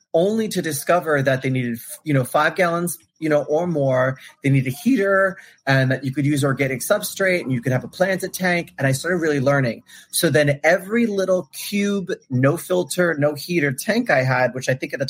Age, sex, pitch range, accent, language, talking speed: 30-49, male, 135-175 Hz, American, English, 215 wpm